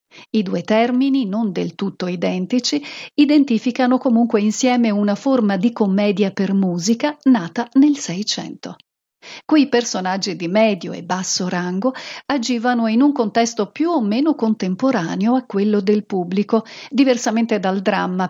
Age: 50-69